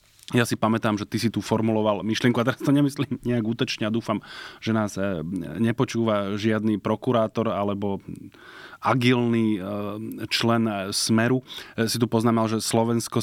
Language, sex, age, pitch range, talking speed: Slovak, male, 20-39, 100-115 Hz, 140 wpm